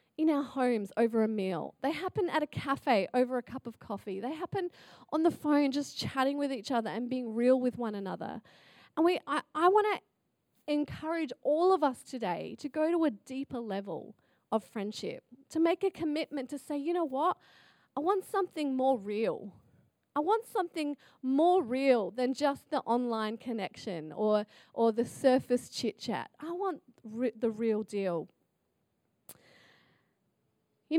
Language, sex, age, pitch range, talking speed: English, female, 30-49, 220-310 Hz, 165 wpm